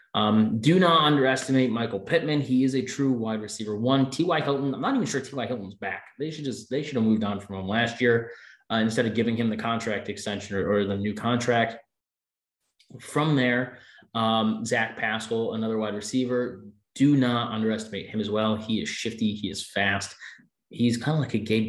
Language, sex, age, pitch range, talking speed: English, male, 20-39, 105-125 Hz, 200 wpm